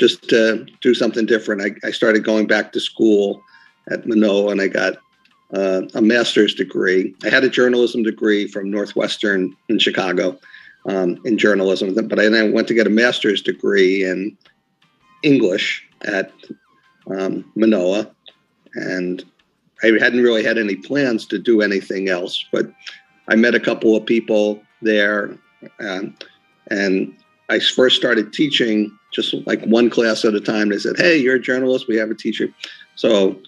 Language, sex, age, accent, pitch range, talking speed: English, male, 50-69, American, 100-120 Hz, 160 wpm